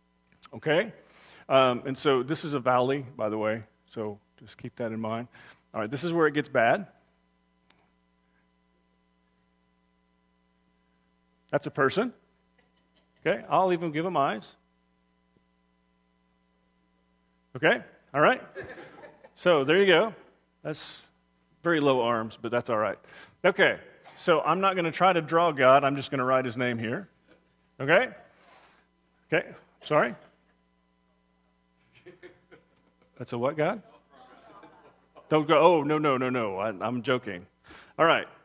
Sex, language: male, English